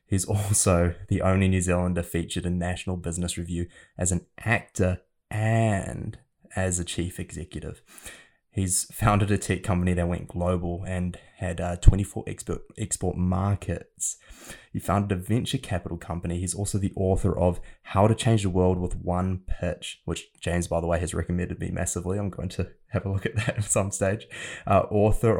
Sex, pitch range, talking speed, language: male, 90-100 Hz, 175 wpm, English